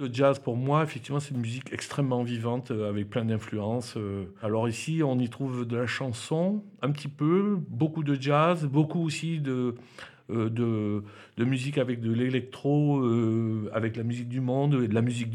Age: 50-69